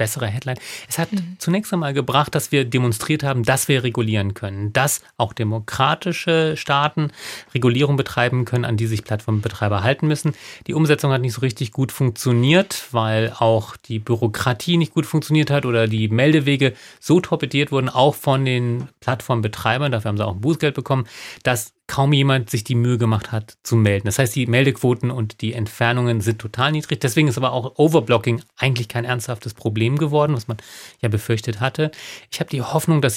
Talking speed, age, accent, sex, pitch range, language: 185 wpm, 30-49, German, male, 115-140 Hz, German